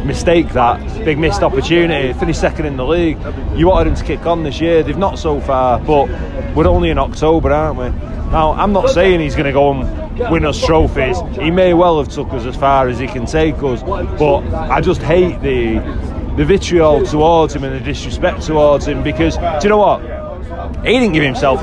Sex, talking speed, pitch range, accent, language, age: male, 215 wpm, 135-175 Hz, British, English, 30-49